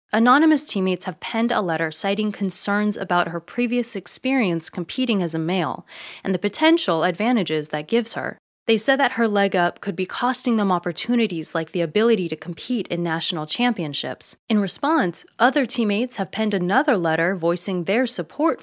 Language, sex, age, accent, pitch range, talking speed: English, female, 20-39, American, 170-225 Hz, 170 wpm